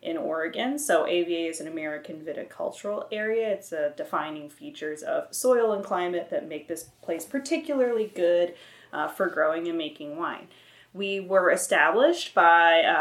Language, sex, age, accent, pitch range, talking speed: English, female, 20-39, American, 175-250 Hz, 155 wpm